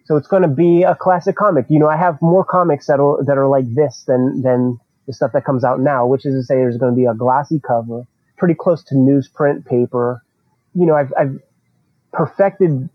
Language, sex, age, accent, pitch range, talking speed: English, male, 30-49, American, 130-155 Hz, 225 wpm